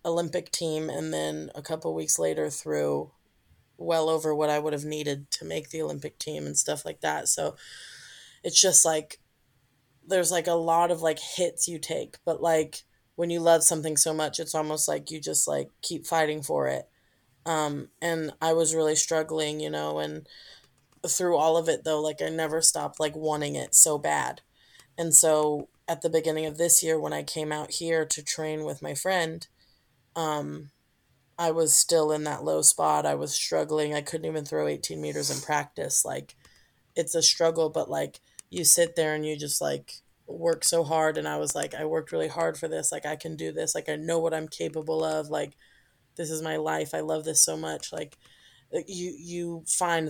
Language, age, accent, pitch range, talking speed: English, 20-39, American, 135-165 Hz, 200 wpm